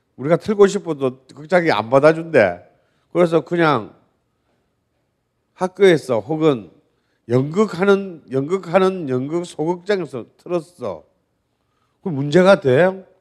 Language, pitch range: Korean, 120-180 Hz